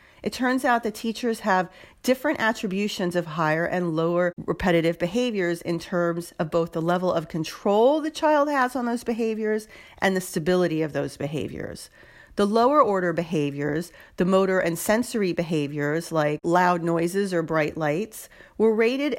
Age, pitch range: 40-59, 165-220 Hz